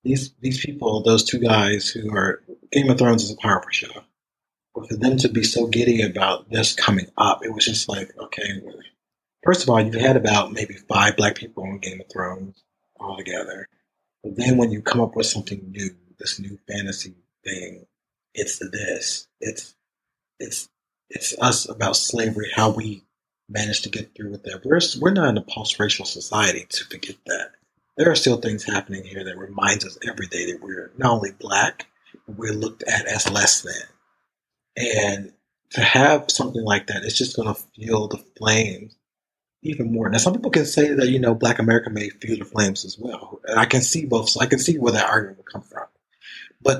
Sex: male